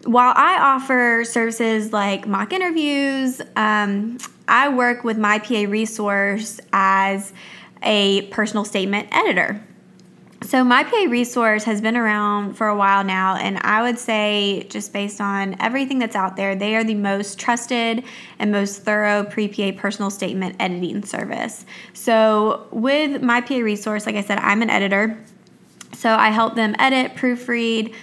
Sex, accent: female, American